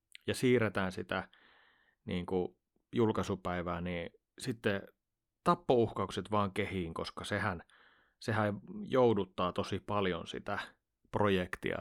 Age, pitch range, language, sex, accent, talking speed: 30-49, 100-120 Hz, Finnish, male, native, 95 wpm